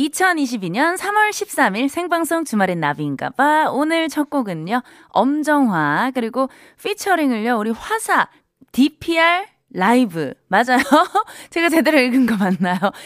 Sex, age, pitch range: female, 20-39, 200-310 Hz